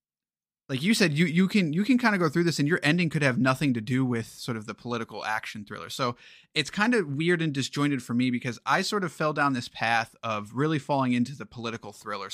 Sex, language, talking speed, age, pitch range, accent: male, English, 255 wpm, 30-49, 120-160 Hz, American